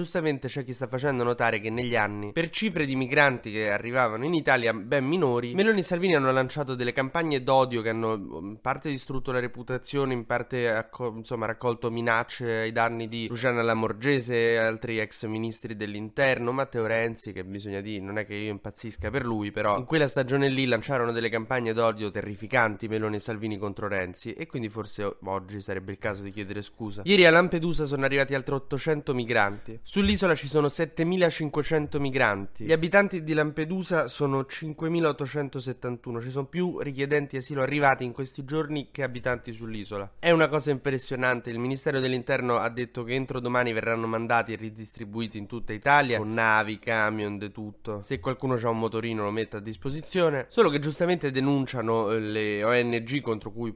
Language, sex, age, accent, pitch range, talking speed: Italian, male, 20-39, native, 110-145 Hz, 175 wpm